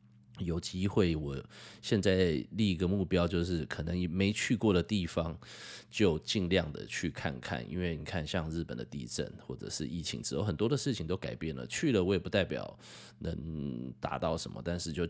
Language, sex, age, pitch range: Chinese, male, 20-39, 80-95 Hz